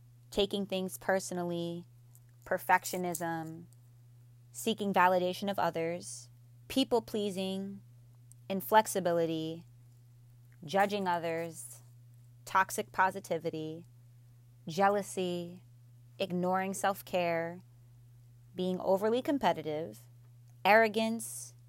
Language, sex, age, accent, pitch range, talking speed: English, female, 20-39, American, 120-185 Hz, 60 wpm